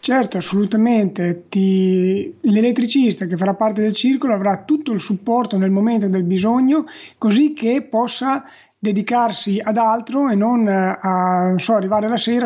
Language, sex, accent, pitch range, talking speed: Italian, male, native, 195-225 Hz, 135 wpm